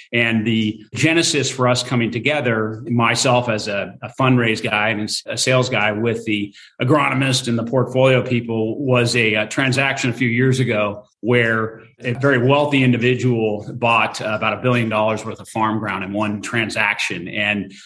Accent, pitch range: American, 110-130 Hz